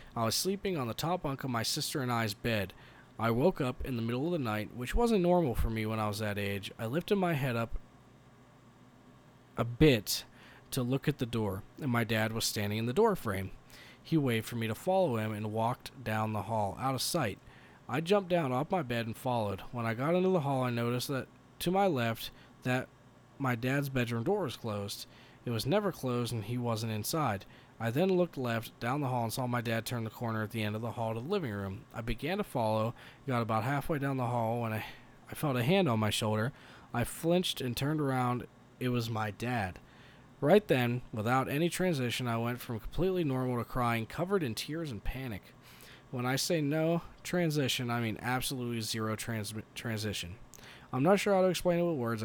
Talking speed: 220 wpm